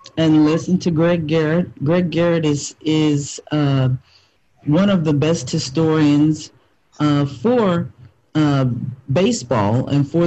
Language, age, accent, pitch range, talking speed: English, 40-59, American, 130-175 Hz, 125 wpm